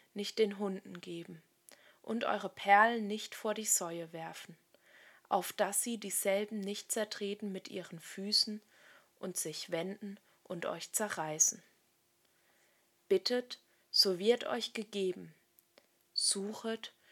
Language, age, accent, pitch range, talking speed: German, 20-39, German, 190-225 Hz, 115 wpm